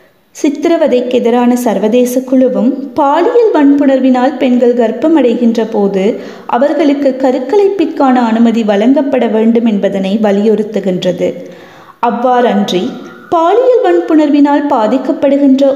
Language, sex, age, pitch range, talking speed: Tamil, female, 20-39, 220-285 Hz, 70 wpm